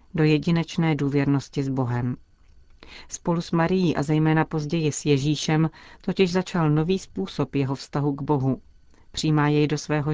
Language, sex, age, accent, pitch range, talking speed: Czech, female, 40-59, native, 135-160 Hz, 150 wpm